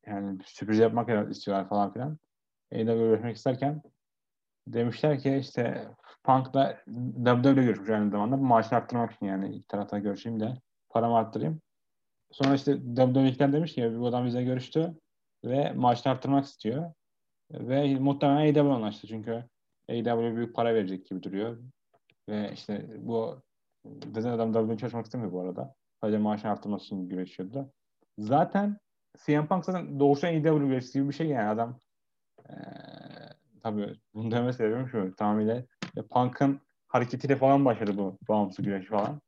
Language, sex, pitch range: Turkish, male, 110-135 Hz